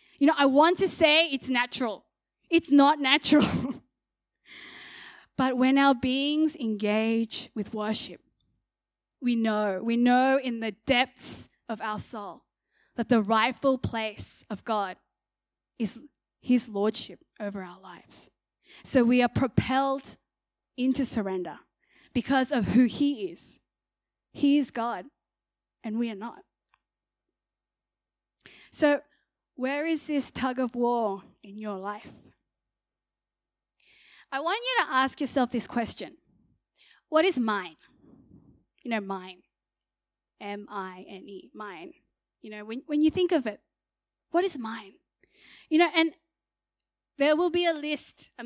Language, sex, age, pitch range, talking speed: English, female, 20-39, 210-285 Hz, 130 wpm